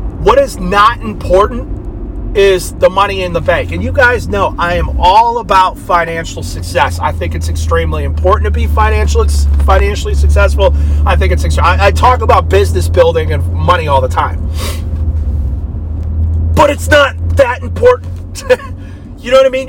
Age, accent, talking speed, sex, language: 30-49, American, 160 wpm, male, English